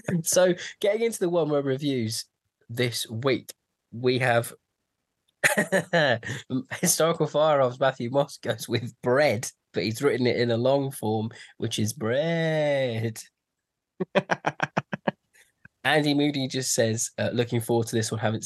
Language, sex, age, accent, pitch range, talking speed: English, male, 20-39, British, 110-145 Hz, 130 wpm